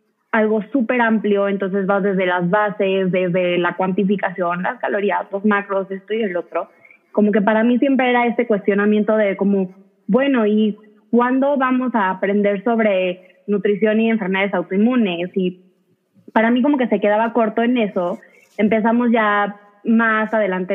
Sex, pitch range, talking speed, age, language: female, 190-225 Hz, 155 wpm, 20-39, Spanish